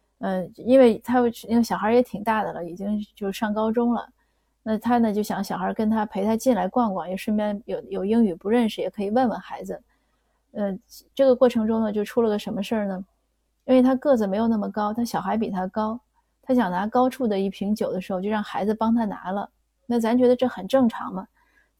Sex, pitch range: female, 195-235 Hz